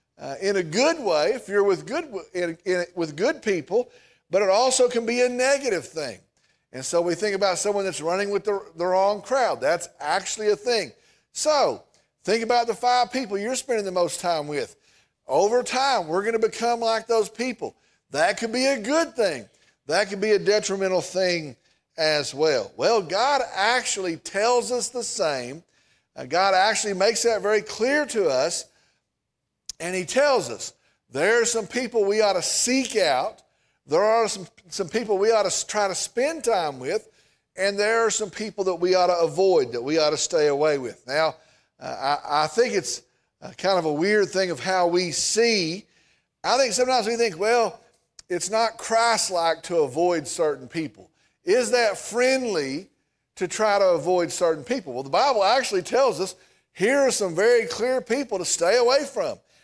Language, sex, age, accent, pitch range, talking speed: English, male, 50-69, American, 180-245 Hz, 185 wpm